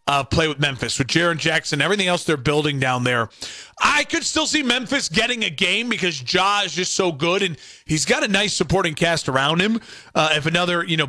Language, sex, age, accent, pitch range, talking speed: English, male, 30-49, American, 145-195 Hz, 220 wpm